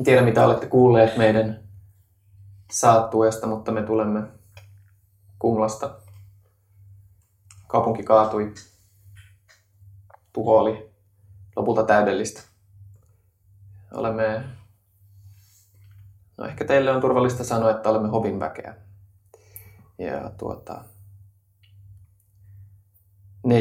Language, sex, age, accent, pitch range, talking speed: Finnish, male, 20-39, native, 100-115 Hz, 80 wpm